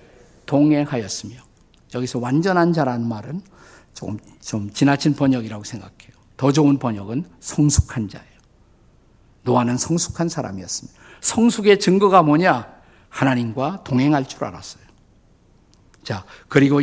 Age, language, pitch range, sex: 50-69, Korean, 125-185 Hz, male